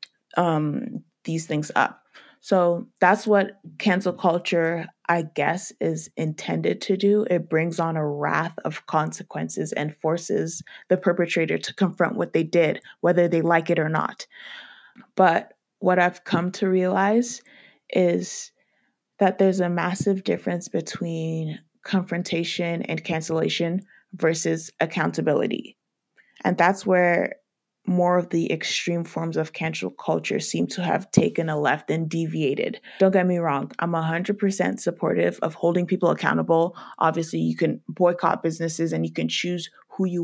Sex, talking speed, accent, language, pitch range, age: female, 145 wpm, American, English, 160-185 Hz, 20-39